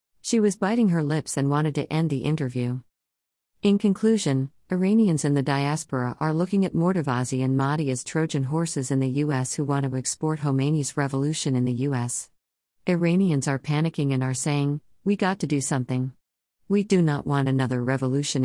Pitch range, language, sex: 130-165 Hz, English, female